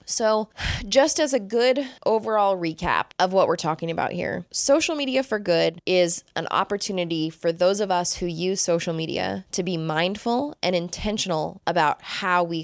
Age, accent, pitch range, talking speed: 20-39, American, 170-205 Hz, 170 wpm